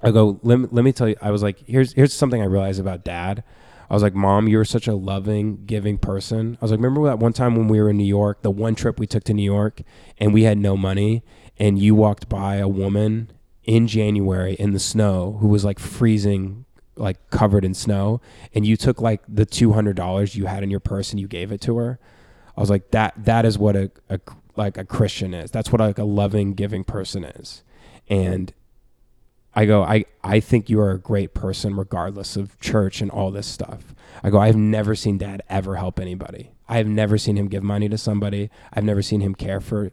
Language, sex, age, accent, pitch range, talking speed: English, male, 20-39, American, 100-110 Hz, 225 wpm